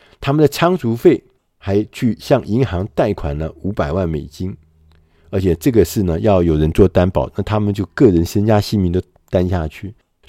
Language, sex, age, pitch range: Chinese, male, 50-69, 90-130 Hz